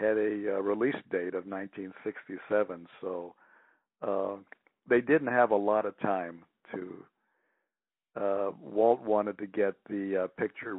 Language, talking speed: English, 140 wpm